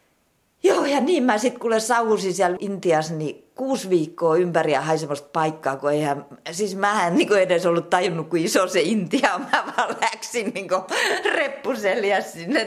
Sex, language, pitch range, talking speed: female, Finnish, 150-225 Hz, 155 wpm